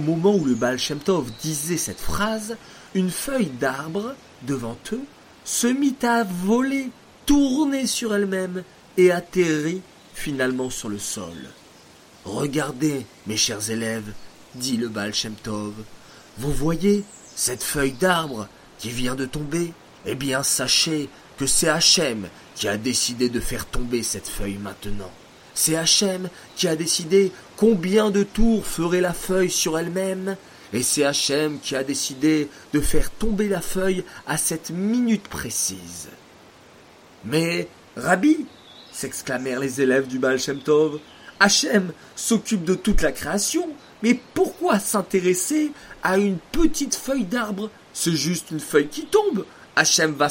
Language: French